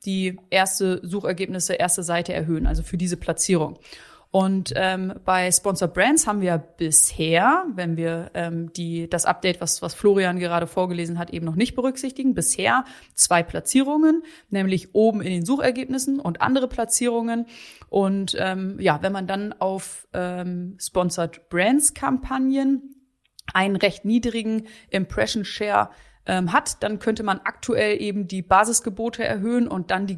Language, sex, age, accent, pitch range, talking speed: German, female, 30-49, German, 180-230 Hz, 145 wpm